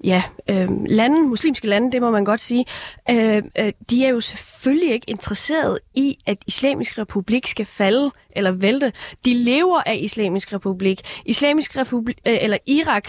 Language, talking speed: Danish, 160 wpm